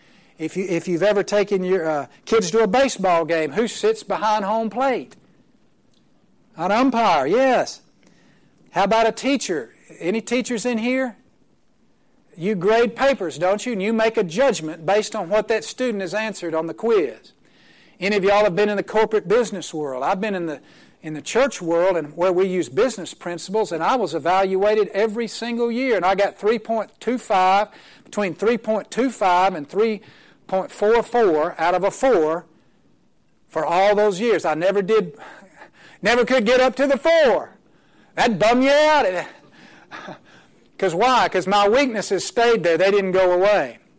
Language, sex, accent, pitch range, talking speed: English, male, American, 185-235 Hz, 170 wpm